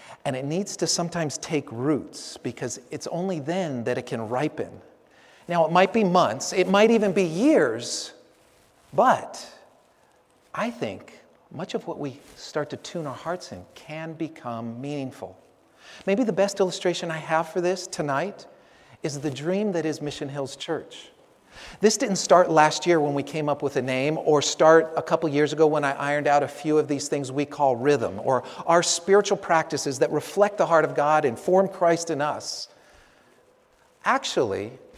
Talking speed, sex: 180 wpm, male